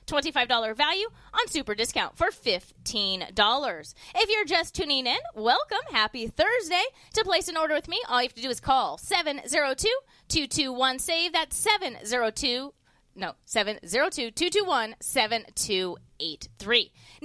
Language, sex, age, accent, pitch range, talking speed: English, female, 20-39, American, 235-340 Hz, 110 wpm